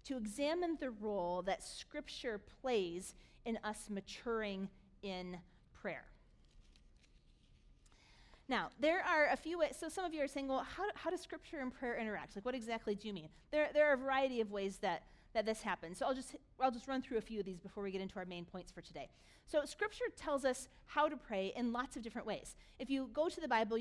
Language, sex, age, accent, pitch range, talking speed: English, female, 40-59, American, 210-280 Hz, 220 wpm